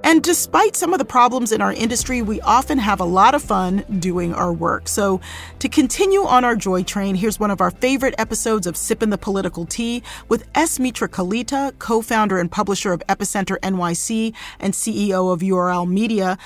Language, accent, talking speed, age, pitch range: English, American, 190 wpm, 40-59, 185-235 Hz